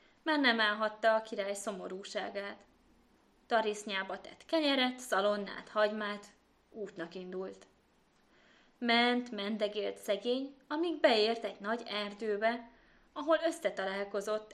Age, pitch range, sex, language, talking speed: 20-39, 195-255 Hz, female, Hungarian, 95 wpm